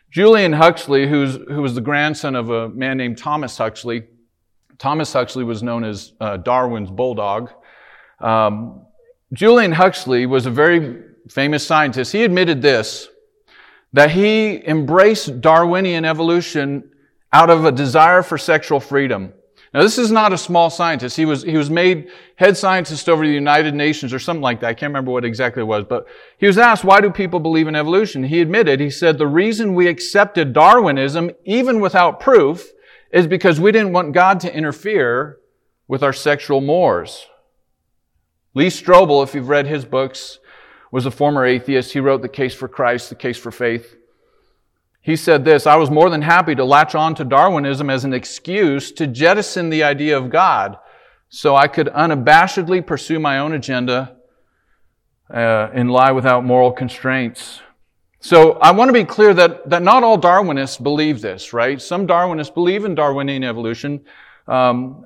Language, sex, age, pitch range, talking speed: English, male, 40-59, 130-175 Hz, 170 wpm